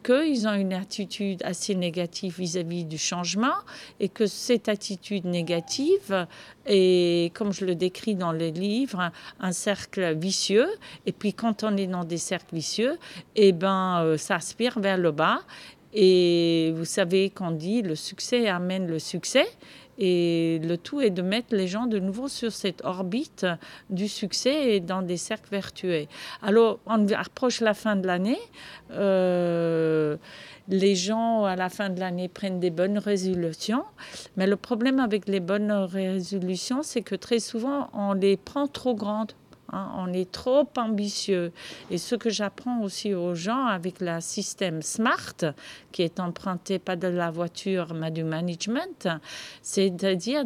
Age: 40-59